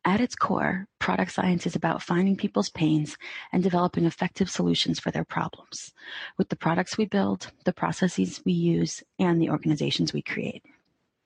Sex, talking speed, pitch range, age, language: female, 165 wpm, 160-200 Hz, 30-49, English